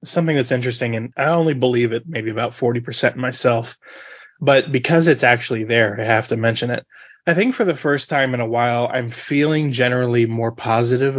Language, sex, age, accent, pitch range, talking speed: English, male, 20-39, American, 120-145 Hz, 195 wpm